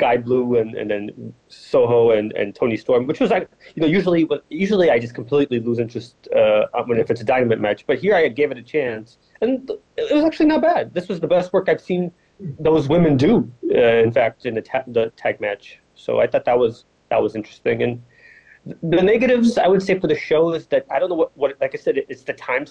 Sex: male